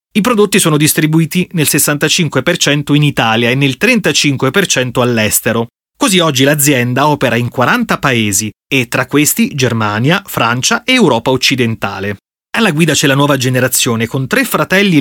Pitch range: 125-165 Hz